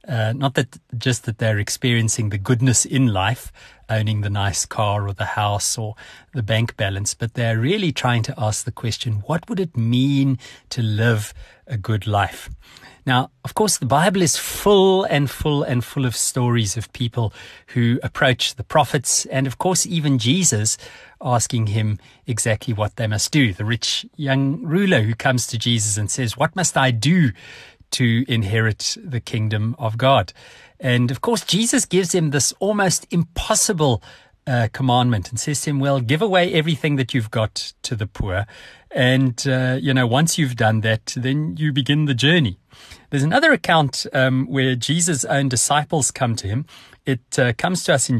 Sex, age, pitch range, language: male, 30-49, 110-145 Hz, English